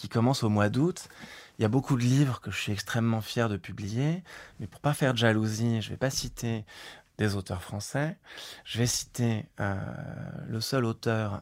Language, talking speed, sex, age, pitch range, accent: French, 200 wpm, male, 20-39, 105-125 Hz, French